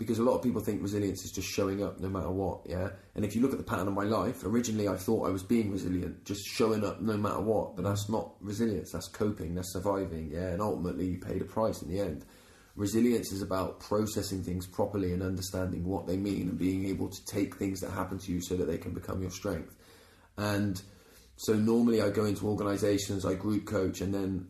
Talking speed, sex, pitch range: 235 wpm, male, 95-105 Hz